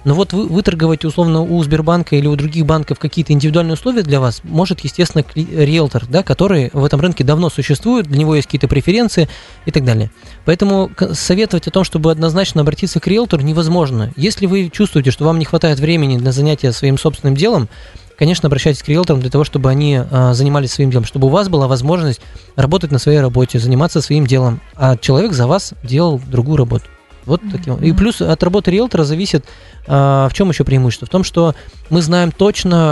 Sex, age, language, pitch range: male, 20-39, Russian, 135-170 Hz